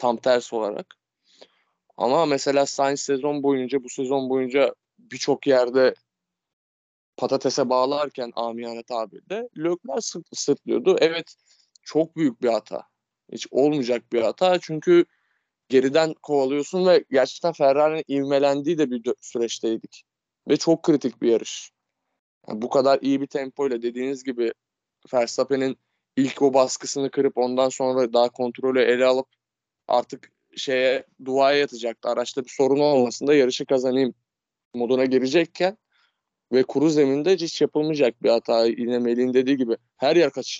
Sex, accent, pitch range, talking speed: male, native, 125-150 Hz, 135 wpm